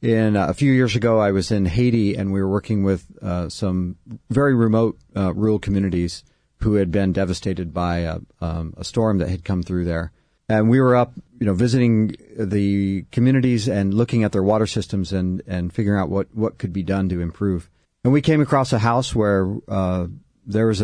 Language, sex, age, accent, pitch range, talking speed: English, male, 40-59, American, 90-110 Hz, 205 wpm